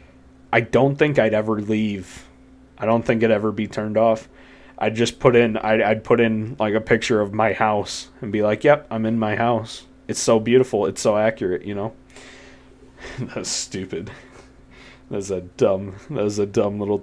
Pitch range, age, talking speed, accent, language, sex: 105-130 Hz, 20-39, 185 wpm, American, English, male